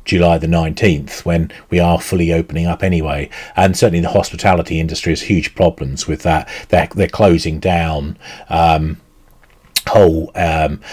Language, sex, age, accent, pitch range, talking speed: English, male, 40-59, British, 80-95 Hz, 150 wpm